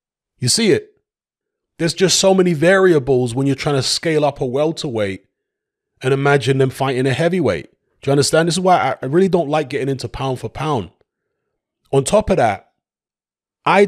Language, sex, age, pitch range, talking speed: English, male, 30-49, 125-165 Hz, 180 wpm